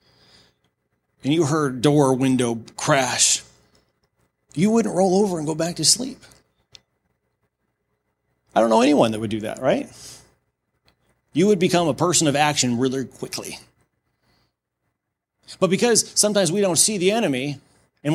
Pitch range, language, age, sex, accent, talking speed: 105-155 Hz, English, 30-49, male, American, 140 wpm